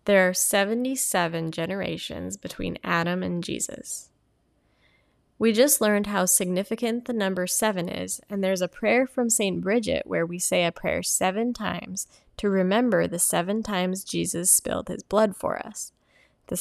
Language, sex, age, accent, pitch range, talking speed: English, female, 10-29, American, 175-220 Hz, 155 wpm